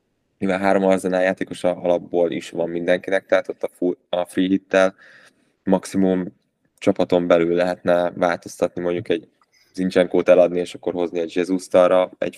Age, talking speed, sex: 20-39, 145 wpm, male